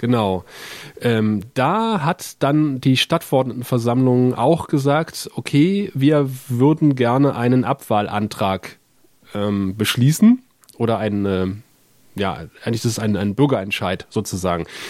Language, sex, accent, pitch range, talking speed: German, male, German, 120-150 Hz, 115 wpm